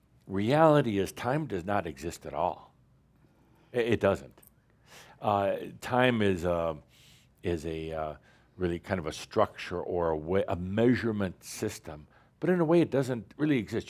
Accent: American